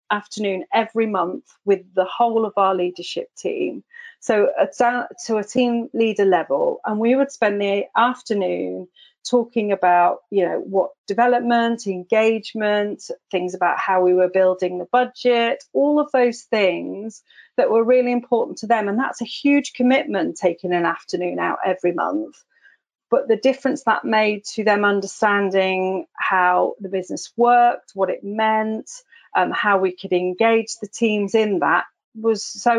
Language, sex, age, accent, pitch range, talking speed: English, female, 40-59, British, 190-245 Hz, 155 wpm